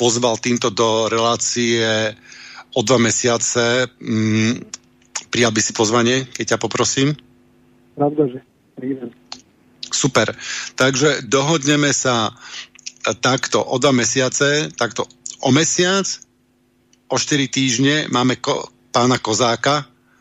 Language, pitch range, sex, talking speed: Slovak, 120-140 Hz, male, 95 wpm